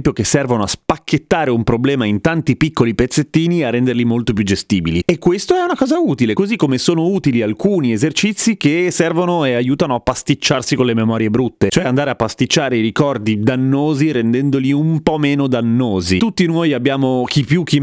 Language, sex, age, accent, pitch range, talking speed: Italian, male, 30-49, native, 120-155 Hz, 185 wpm